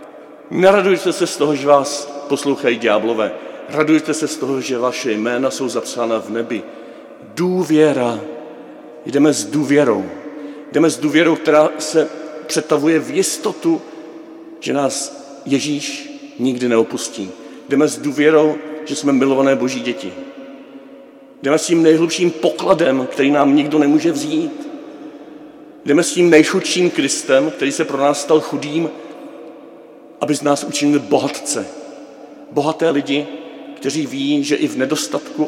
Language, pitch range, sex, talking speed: Czech, 140-170 Hz, male, 130 wpm